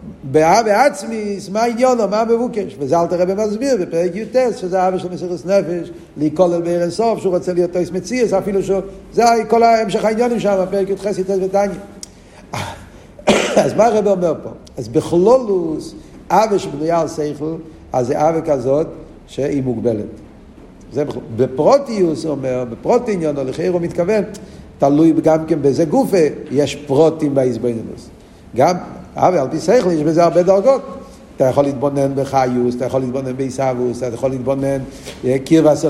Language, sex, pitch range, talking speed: Hebrew, male, 155-205 Hz, 145 wpm